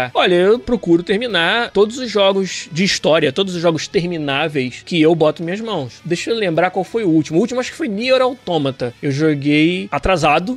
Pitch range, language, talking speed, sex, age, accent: 150-210 Hz, Portuguese, 205 wpm, male, 20-39, Brazilian